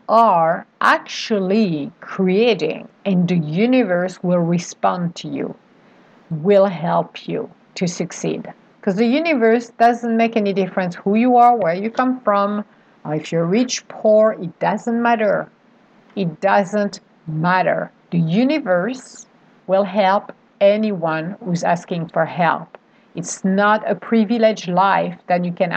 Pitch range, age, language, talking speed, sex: 185-225 Hz, 50-69, English, 135 wpm, female